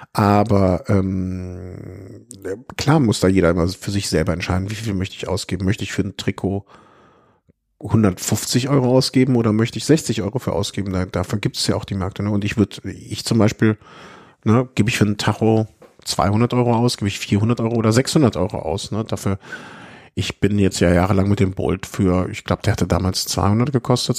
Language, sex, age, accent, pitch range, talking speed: German, male, 50-69, German, 95-115 Hz, 200 wpm